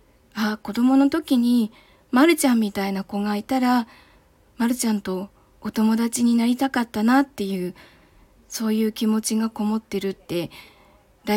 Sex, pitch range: female, 195-245 Hz